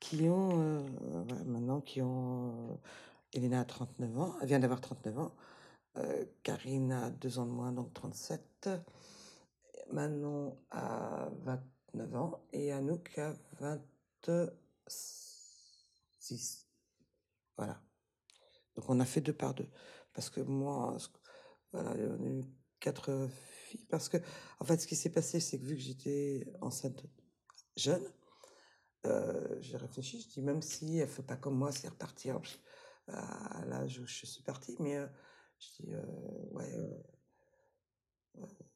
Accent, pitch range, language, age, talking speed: French, 130-170 Hz, French, 50-69, 155 wpm